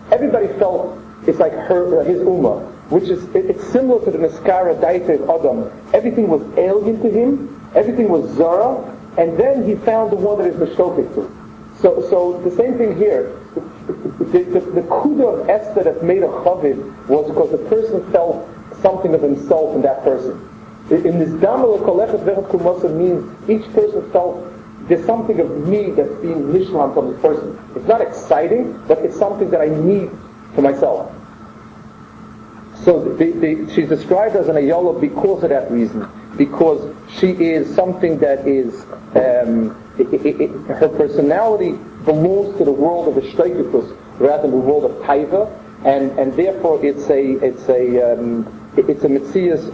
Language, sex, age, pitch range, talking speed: English, male, 40-59, 150-230 Hz, 170 wpm